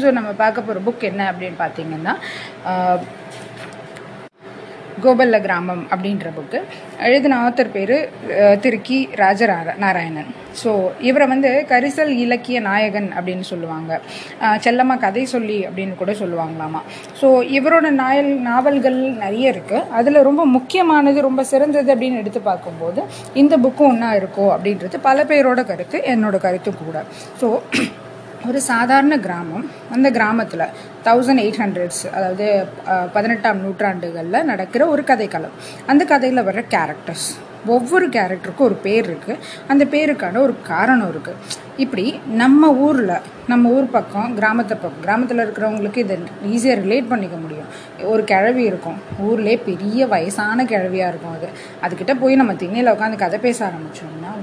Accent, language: native, Tamil